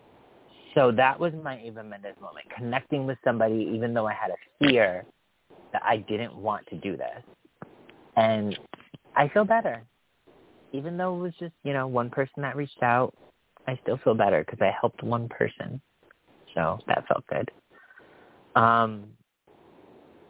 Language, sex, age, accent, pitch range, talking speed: English, male, 30-49, American, 100-130 Hz, 155 wpm